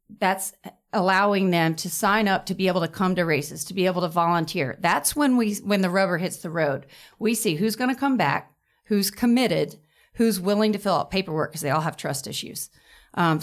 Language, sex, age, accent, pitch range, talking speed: English, female, 40-59, American, 165-205 Hz, 220 wpm